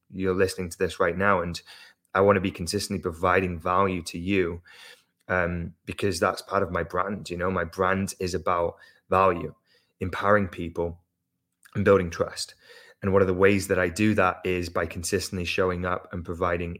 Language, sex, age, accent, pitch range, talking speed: English, male, 20-39, British, 85-95 Hz, 180 wpm